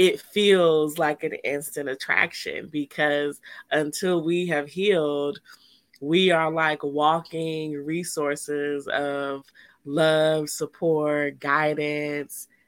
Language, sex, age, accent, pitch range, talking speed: English, female, 20-39, American, 145-165 Hz, 95 wpm